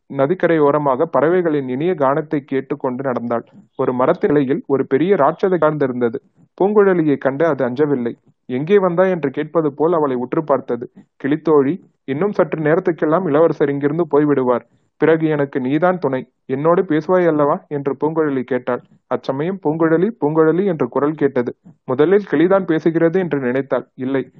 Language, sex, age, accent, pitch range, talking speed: Tamil, male, 30-49, native, 135-175 Hz, 135 wpm